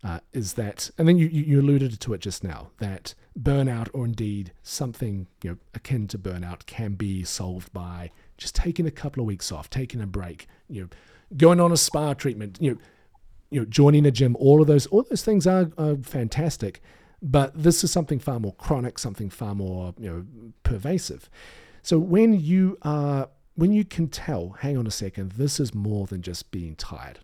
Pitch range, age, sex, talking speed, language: 100-145 Hz, 40-59, male, 200 wpm, English